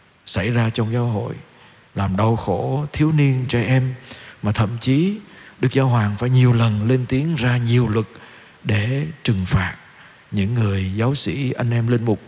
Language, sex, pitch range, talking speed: Vietnamese, male, 110-135 Hz, 180 wpm